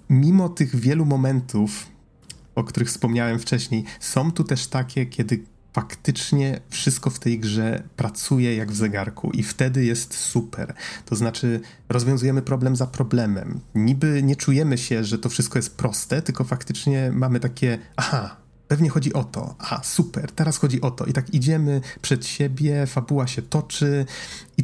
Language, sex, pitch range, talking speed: Polish, male, 115-140 Hz, 160 wpm